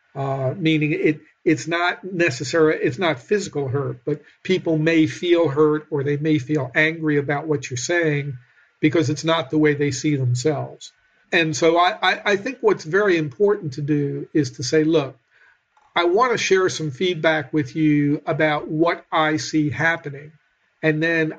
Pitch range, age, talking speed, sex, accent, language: 150-165 Hz, 50-69, 170 wpm, male, American, English